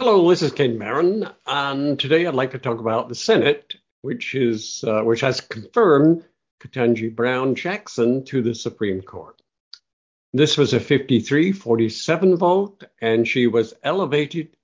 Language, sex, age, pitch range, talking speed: English, male, 60-79, 115-150 Hz, 150 wpm